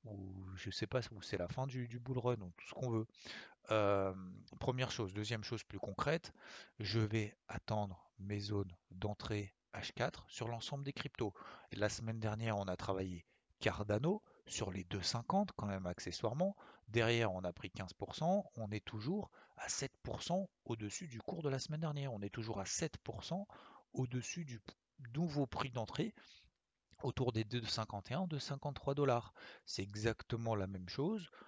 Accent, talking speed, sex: French, 170 wpm, male